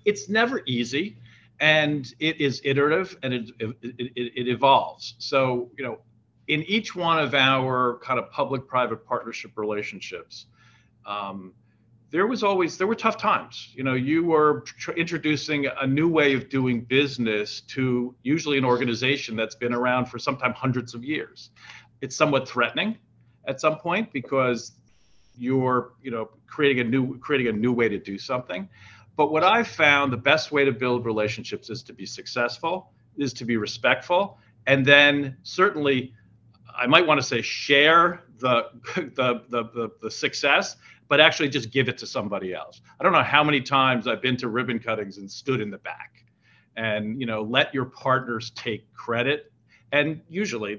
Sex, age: male, 50-69